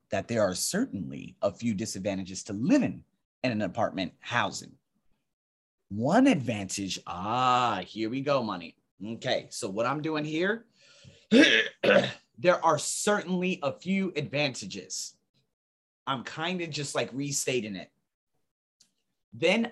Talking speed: 120 wpm